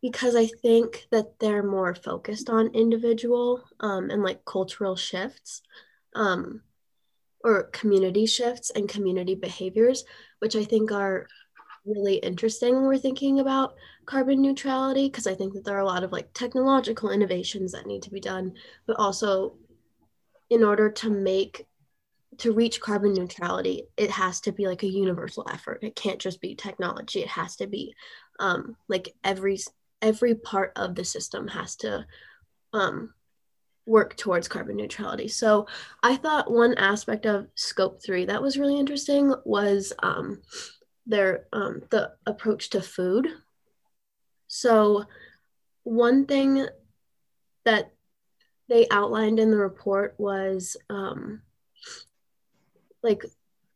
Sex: female